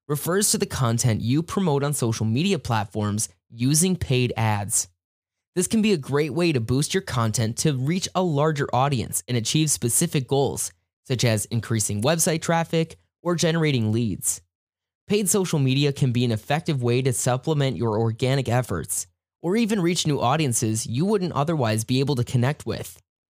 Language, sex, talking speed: English, male, 170 wpm